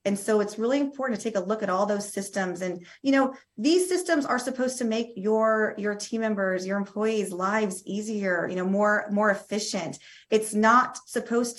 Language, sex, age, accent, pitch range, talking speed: English, female, 30-49, American, 190-230 Hz, 195 wpm